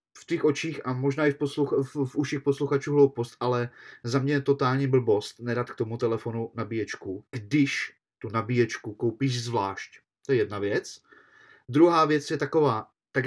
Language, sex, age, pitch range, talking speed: Czech, male, 30-49, 120-145 Hz, 165 wpm